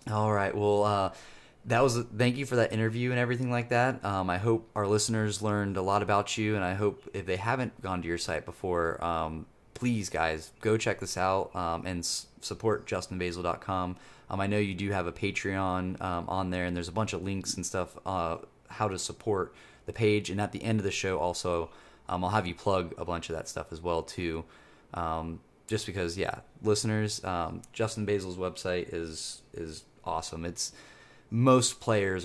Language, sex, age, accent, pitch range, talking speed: English, male, 20-39, American, 90-110 Hz, 205 wpm